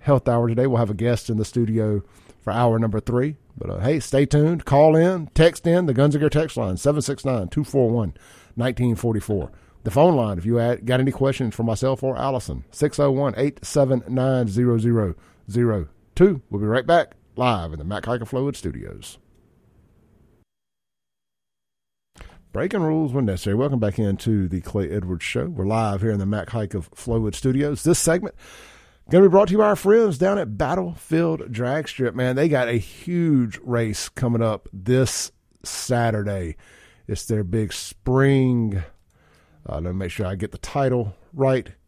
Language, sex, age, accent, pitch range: Japanese, male, 50-69, American, 105-140 Hz